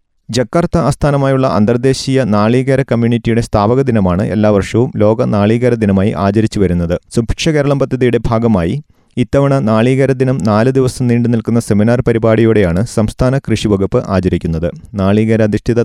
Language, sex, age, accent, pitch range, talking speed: Malayalam, male, 30-49, native, 105-125 Hz, 120 wpm